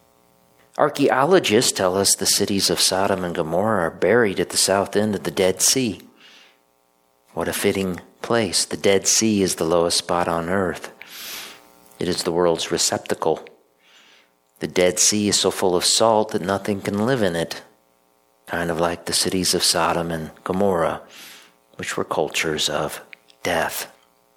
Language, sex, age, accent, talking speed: English, male, 50-69, American, 160 wpm